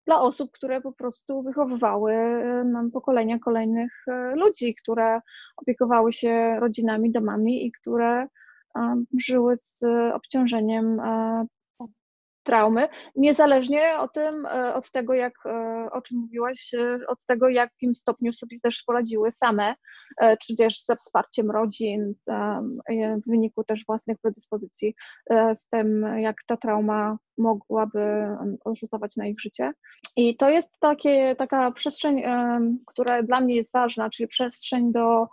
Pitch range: 225-255 Hz